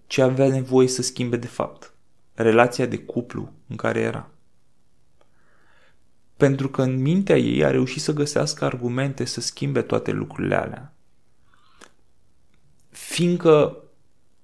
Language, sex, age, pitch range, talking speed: Romanian, male, 20-39, 110-145 Hz, 120 wpm